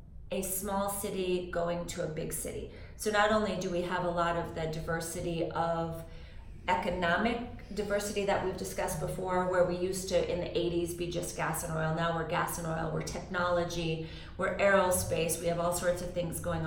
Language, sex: English, female